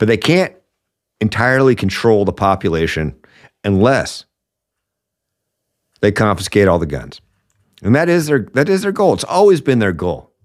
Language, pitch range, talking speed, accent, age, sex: English, 100-140 Hz, 155 wpm, American, 50-69, male